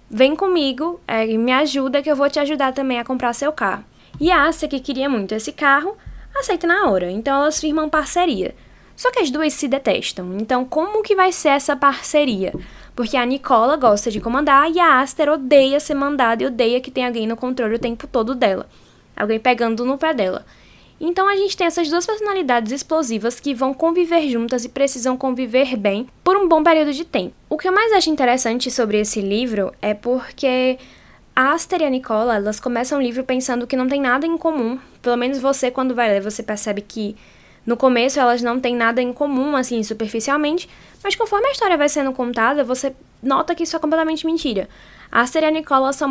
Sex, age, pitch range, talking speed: female, 10-29, 245-305 Hz, 205 wpm